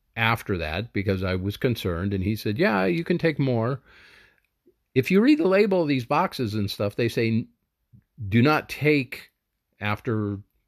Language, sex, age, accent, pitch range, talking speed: English, male, 50-69, American, 105-145 Hz, 170 wpm